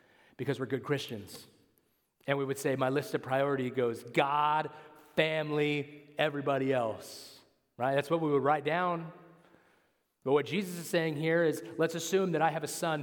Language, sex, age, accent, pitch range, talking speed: English, male, 30-49, American, 130-155 Hz, 175 wpm